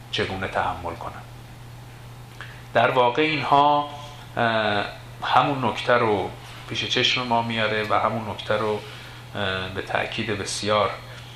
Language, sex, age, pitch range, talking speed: Persian, male, 40-59, 100-120 Hz, 105 wpm